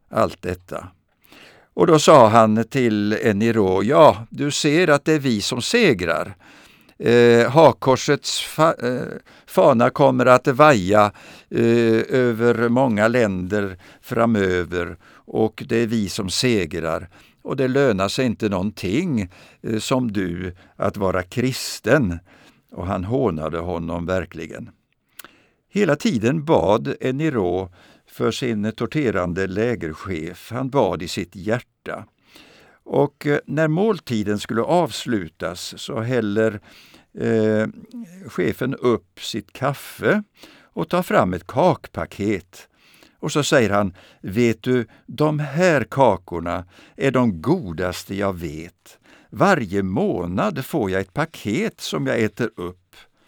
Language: Swedish